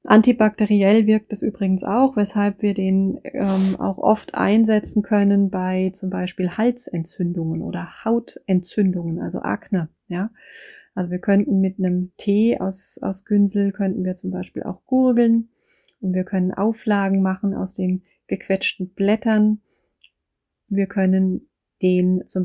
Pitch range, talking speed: 180-210 Hz, 130 wpm